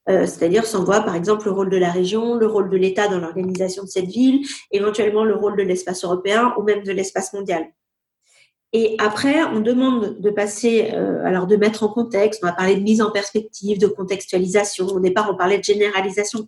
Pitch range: 195-235 Hz